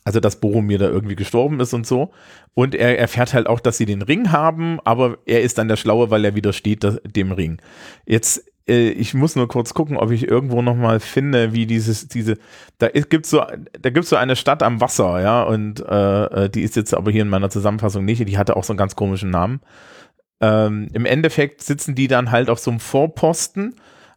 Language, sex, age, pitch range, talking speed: German, male, 40-59, 110-135 Hz, 210 wpm